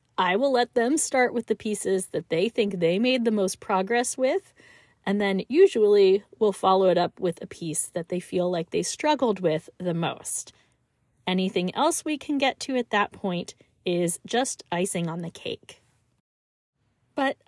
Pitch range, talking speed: 185-280 Hz, 180 wpm